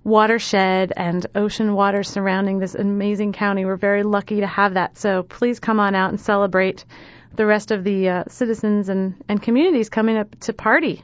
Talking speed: 190 wpm